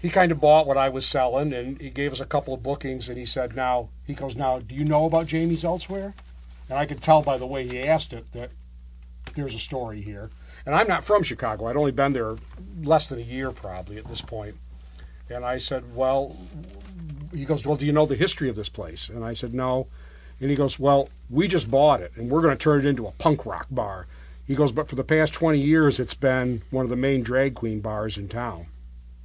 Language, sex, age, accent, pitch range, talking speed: English, male, 50-69, American, 115-160 Hz, 240 wpm